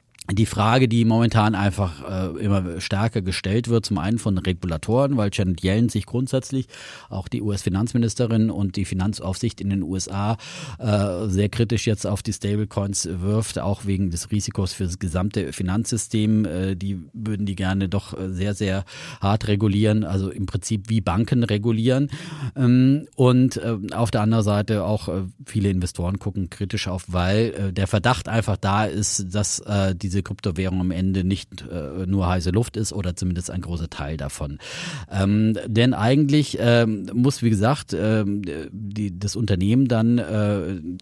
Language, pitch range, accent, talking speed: German, 95-115 Hz, German, 150 wpm